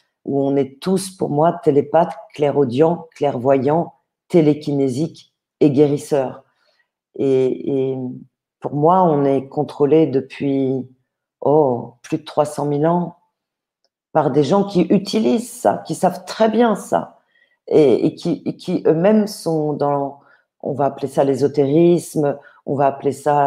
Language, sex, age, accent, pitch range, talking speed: French, female, 40-59, French, 140-170 Hz, 140 wpm